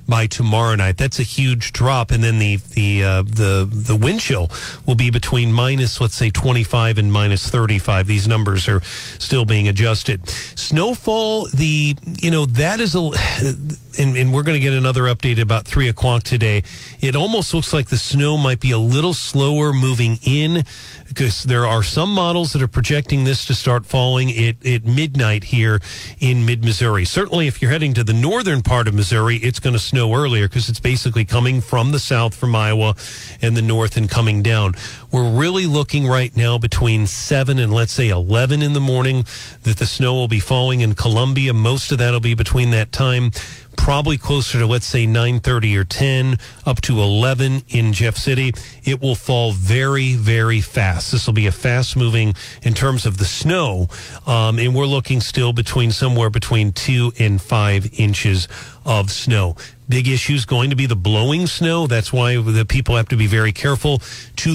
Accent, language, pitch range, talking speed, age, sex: American, English, 110-135 Hz, 190 wpm, 40-59, male